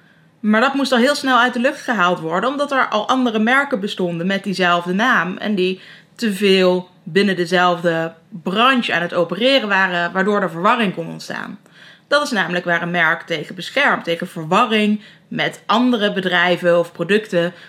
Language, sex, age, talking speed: Dutch, female, 20-39, 175 wpm